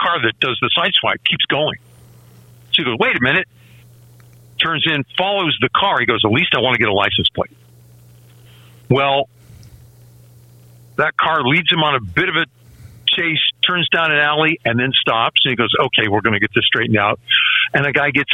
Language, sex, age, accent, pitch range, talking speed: English, male, 50-69, American, 115-150 Hz, 205 wpm